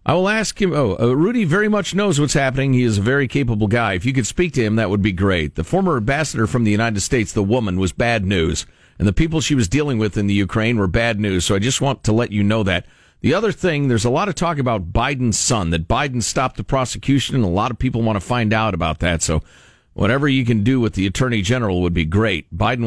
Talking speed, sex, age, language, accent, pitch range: 270 wpm, male, 50-69, English, American, 100-135 Hz